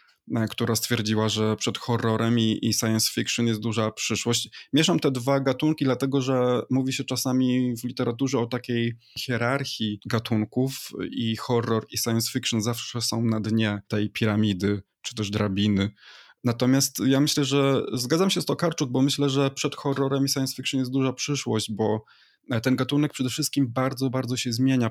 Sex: male